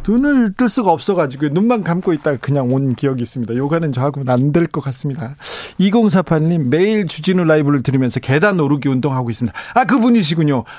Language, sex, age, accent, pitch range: Korean, male, 40-59, native, 130-185 Hz